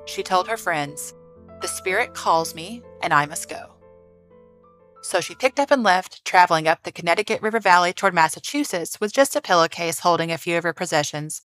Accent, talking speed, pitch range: American, 190 wpm, 165-205 Hz